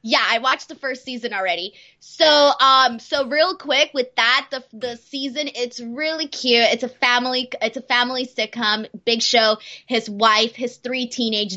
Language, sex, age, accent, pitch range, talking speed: English, female, 20-39, American, 215-265 Hz, 175 wpm